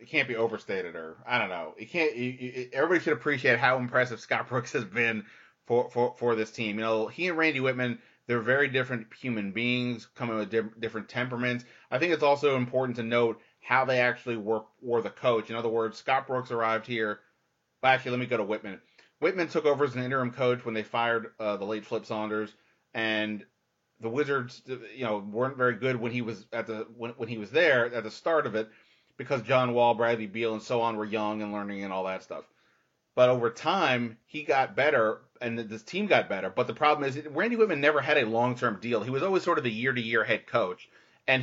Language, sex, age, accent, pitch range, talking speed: English, male, 30-49, American, 110-135 Hz, 220 wpm